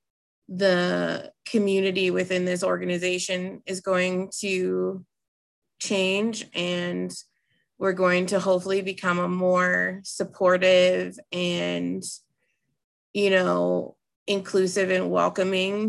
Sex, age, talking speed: female, 20-39, 90 wpm